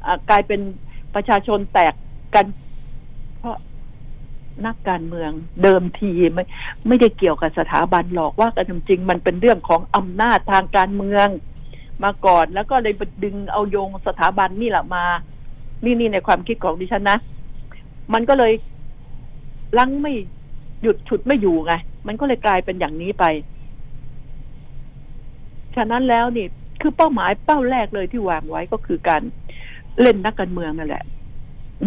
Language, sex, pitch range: Thai, female, 180-235 Hz